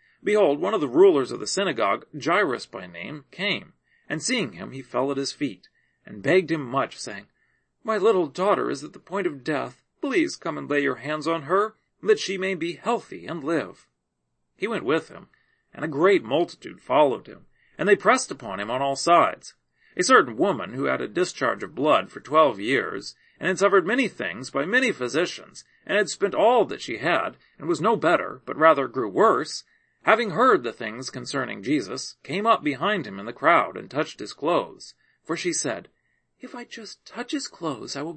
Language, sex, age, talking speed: English, male, 40-59, 205 wpm